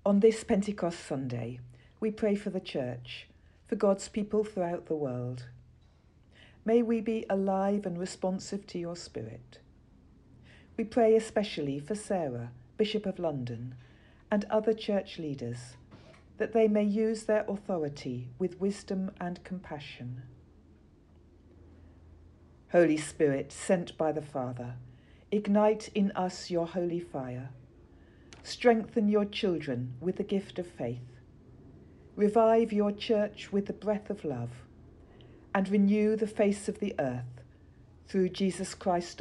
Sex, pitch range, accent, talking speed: female, 120-200 Hz, British, 130 wpm